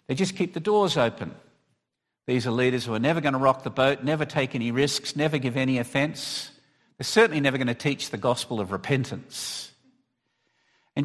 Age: 50-69